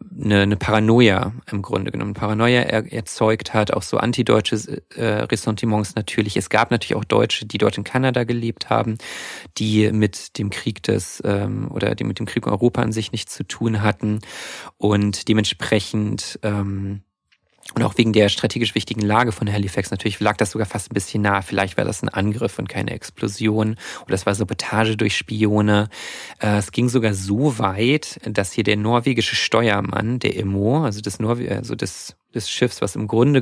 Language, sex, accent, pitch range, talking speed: German, male, German, 105-115 Hz, 170 wpm